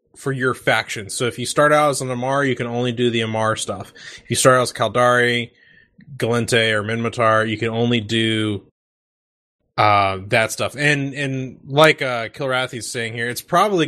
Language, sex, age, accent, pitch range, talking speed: English, male, 20-39, American, 110-130 Hz, 185 wpm